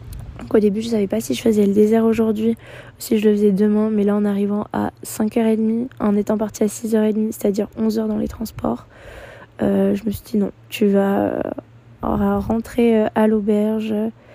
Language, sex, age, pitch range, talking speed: French, female, 20-39, 200-225 Hz, 190 wpm